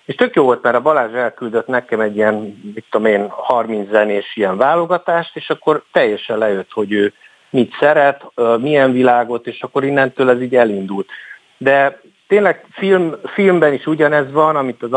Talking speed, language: 170 wpm, Hungarian